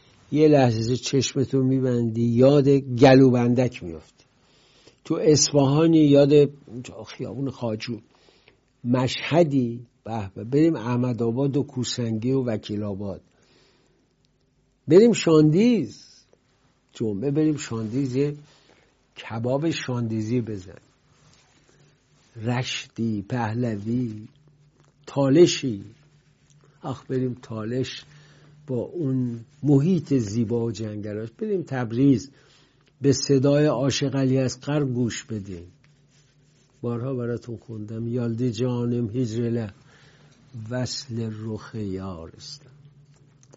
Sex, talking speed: male, 85 wpm